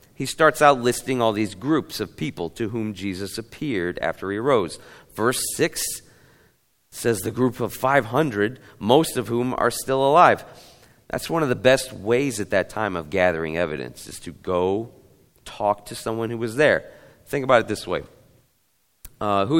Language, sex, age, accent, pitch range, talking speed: English, male, 40-59, American, 100-130 Hz, 175 wpm